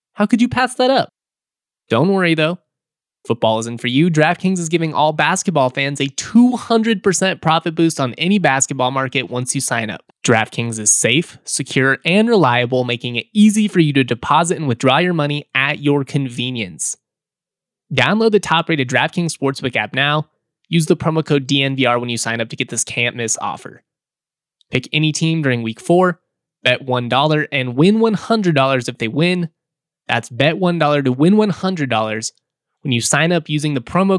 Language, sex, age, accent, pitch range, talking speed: English, male, 20-39, American, 130-170 Hz, 175 wpm